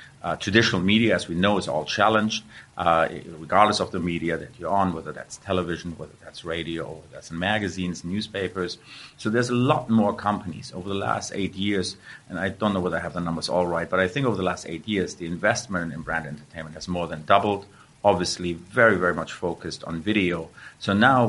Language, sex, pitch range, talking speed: English, male, 85-105 Hz, 215 wpm